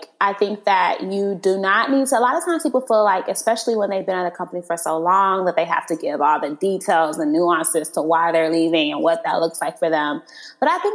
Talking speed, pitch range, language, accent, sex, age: 270 wpm, 185-255 Hz, English, American, female, 20-39